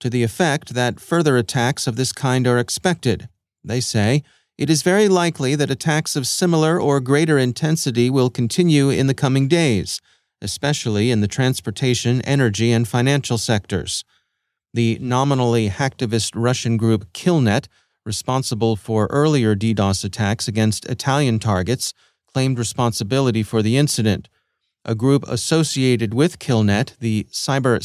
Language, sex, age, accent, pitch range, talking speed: English, male, 30-49, American, 115-140 Hz, 140 wpm